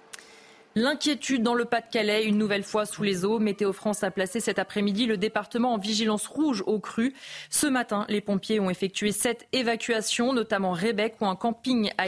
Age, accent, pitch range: 20-39, French, 195-230 Hz